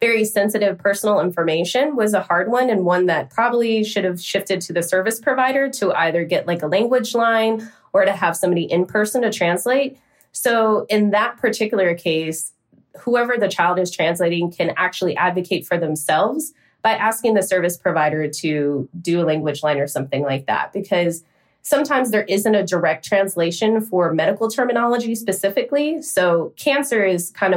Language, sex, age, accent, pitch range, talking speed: English, female, 20-39, American, 160-205 Hz, 170 wpm